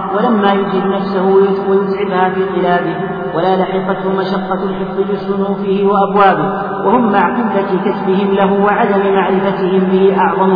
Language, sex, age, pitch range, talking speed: Arabic, male, 40-59, 185-195 Hz, 120 wpm